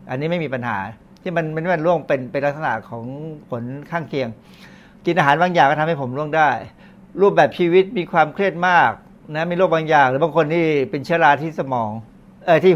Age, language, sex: 60-79, Thai, male